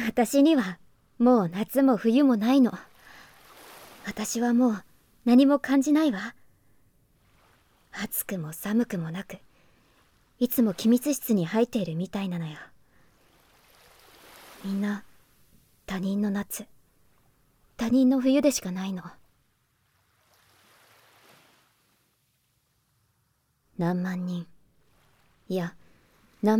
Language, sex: Japanese, male